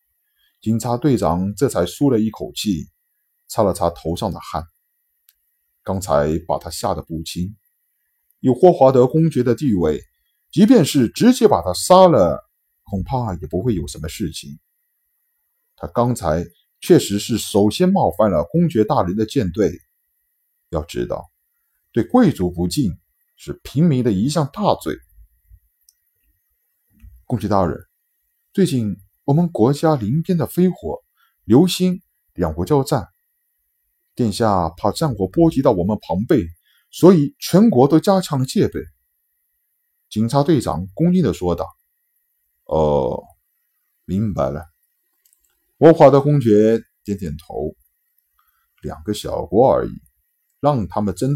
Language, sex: Chinese, male